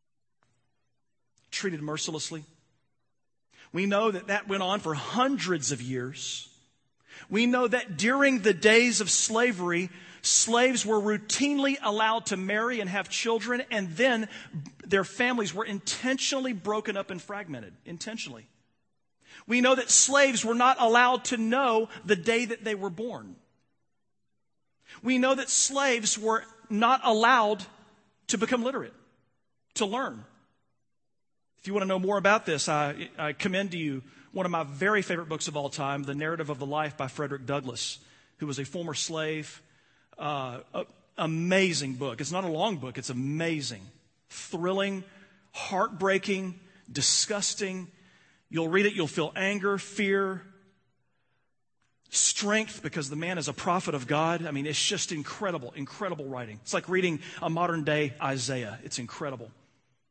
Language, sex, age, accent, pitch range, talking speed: English, male, 40-59, American, 145-215 Hz, 145 wpm